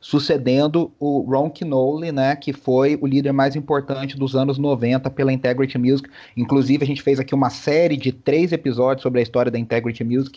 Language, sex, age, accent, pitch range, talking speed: Portuguese, male, 30-49, Brazilian, 130-165 Hz, 185 wpm